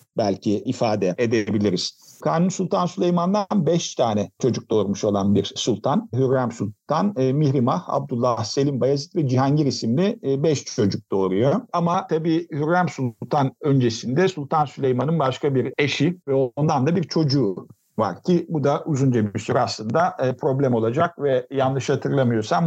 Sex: male